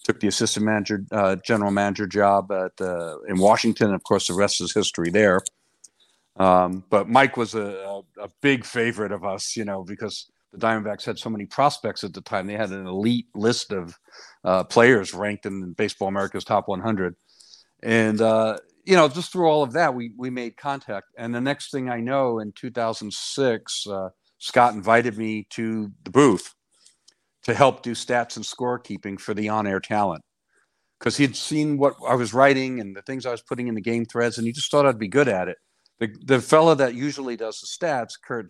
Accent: American